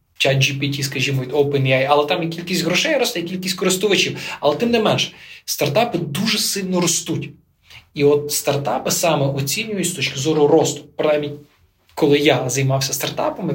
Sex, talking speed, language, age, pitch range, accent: male, 155 wpm, Ukrainian, 20-39, 130-155 Hz, native